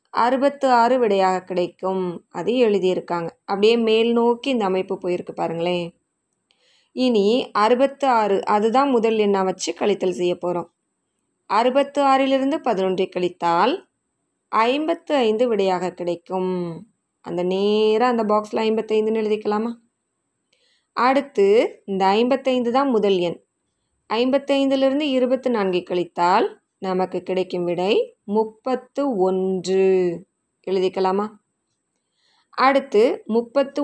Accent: native